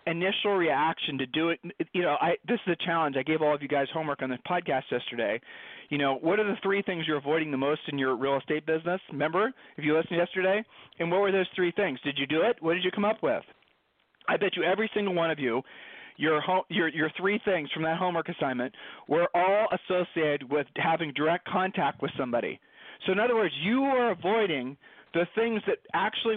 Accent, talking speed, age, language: American, 220 wpm, 40-59, English